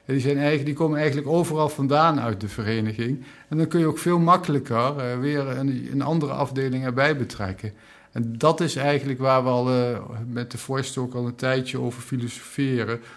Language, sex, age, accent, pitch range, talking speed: Dutch, male, 50-69, Dutch, 125-145 Hz, 175 wpm